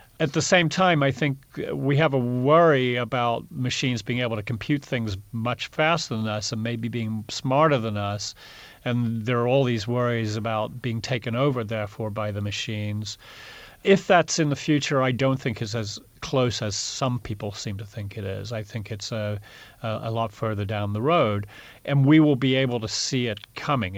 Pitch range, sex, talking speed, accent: 110-135 Hz, male, 200 wpm, American